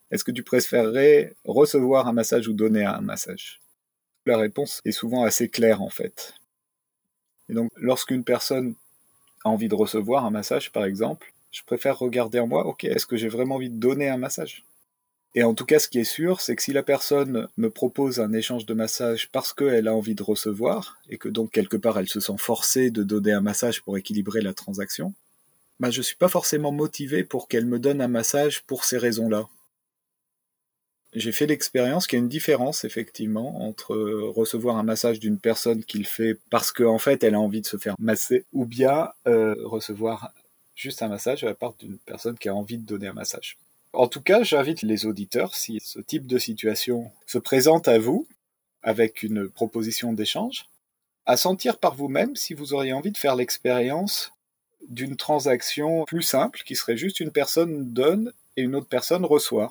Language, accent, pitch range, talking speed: French, French, 110-140 Hz, 195 wpm